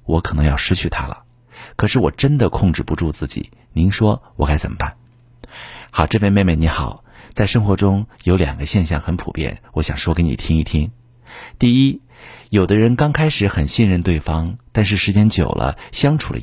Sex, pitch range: male, 85-120 Hz